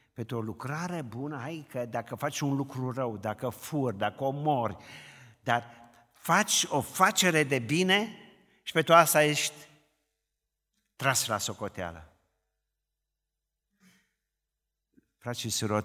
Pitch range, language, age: 90-120 Hz, Romanian, 50-69